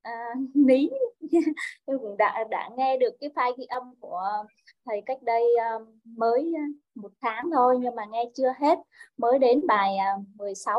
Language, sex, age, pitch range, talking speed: Vietnamese, female, 20-39, 230-290 Hz, 150 wpm